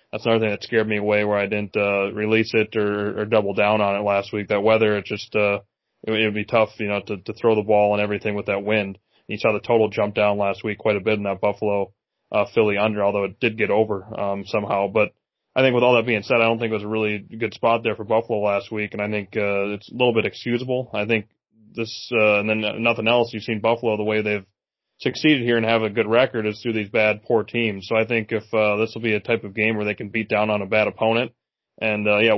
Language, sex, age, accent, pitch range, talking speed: English, male, 20-39, American, 105-110 Hz, 275 wpm